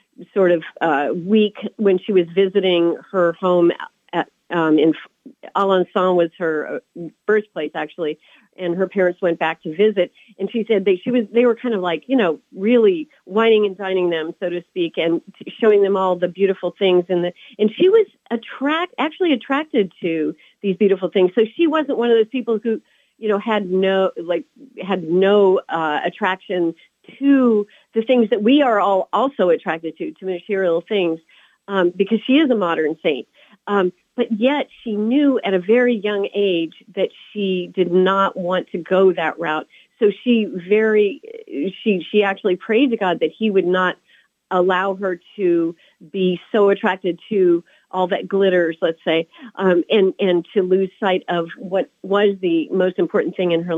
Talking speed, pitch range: 180 wpm, 175-220 Hz